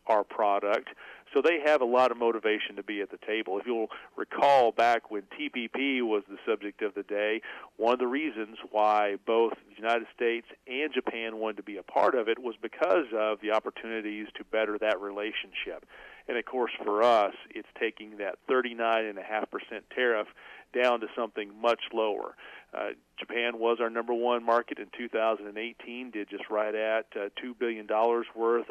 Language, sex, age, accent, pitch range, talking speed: English, male, 40-59, American, 105-120 Hz, 180 wpm